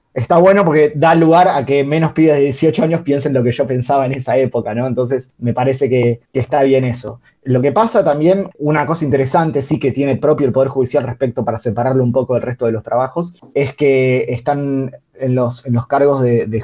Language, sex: Spanish, male